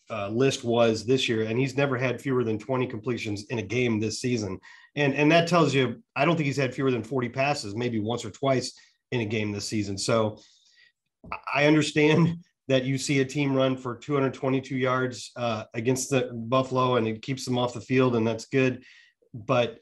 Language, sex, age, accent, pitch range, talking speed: English, male, 30-49, American, 115-140 Hz, 205 wpm